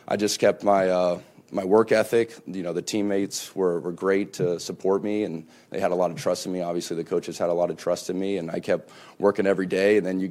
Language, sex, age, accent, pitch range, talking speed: English, male, 30-49, American, 90-100 Hz, 270 wpm